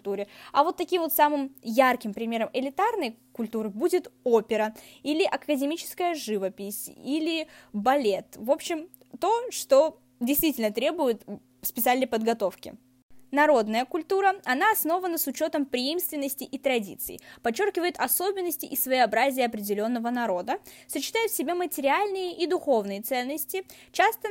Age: 20-39